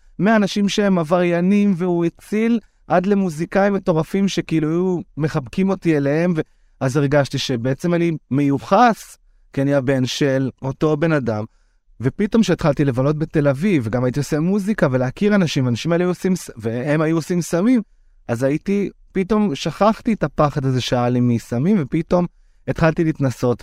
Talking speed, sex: 140 wpm, male